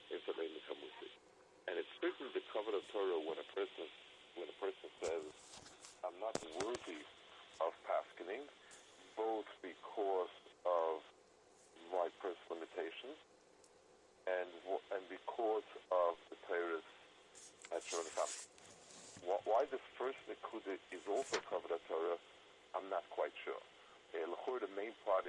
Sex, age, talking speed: male, 50-69, 125 wpm